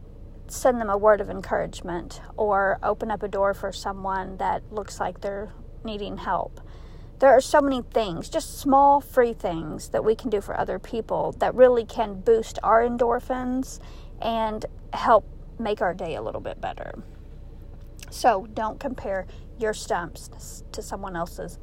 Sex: female